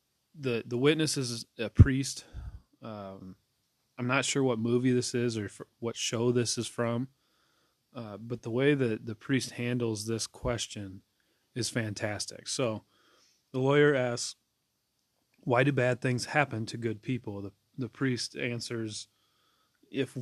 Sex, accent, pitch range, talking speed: male, American, 110-135 Hz, 150 wpm